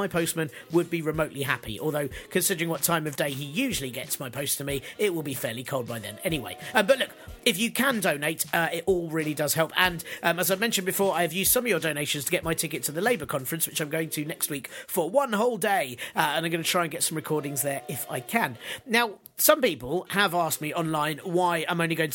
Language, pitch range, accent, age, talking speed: English, 155-195 Hz, British, 40-59, 265 wpm